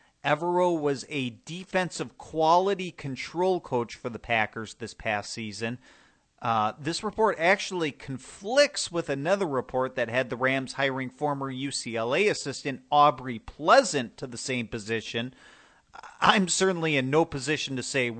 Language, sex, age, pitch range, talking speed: English, male, 40-59, 120-155 Hz, 140 wpm